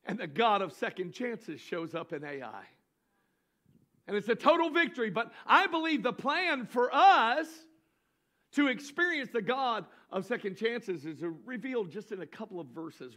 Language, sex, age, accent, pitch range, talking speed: English, male, 50-69, American, 230-335 Hz, 170 wpm